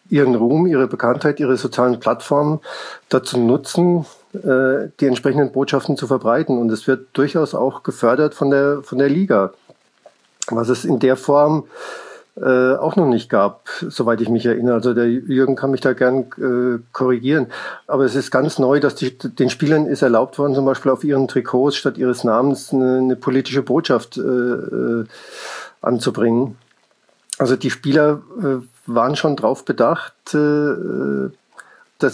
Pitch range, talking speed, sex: 125-145 Hz, 160 wpm, male